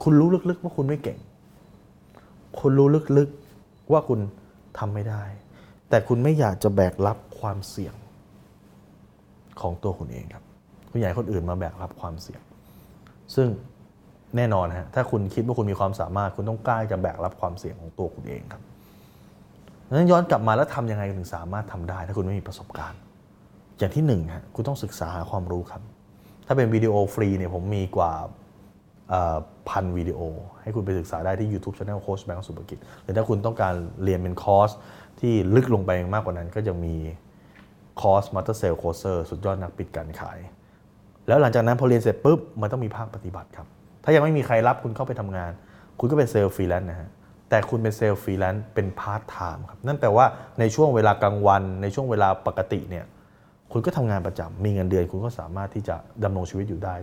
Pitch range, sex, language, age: 95-115 Hz, male, Thai, 20-39